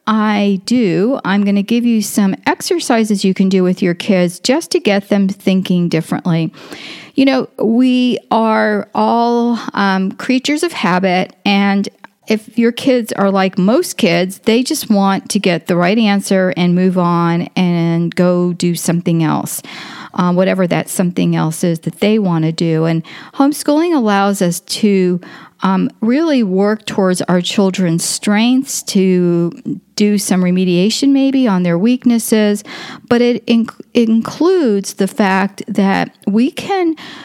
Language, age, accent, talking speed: English, 40-59, American, 150 wpm